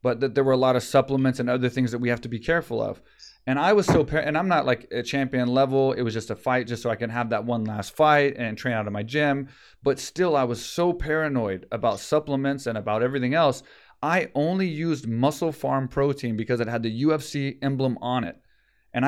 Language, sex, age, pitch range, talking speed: English, male, 30-49, 120-150 Hz, 240 wpm